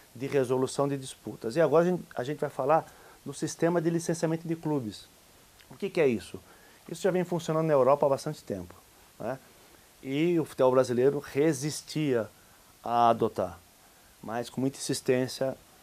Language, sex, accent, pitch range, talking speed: Portuguese, male, Brazilian, 115-160 Hz, 165 wpm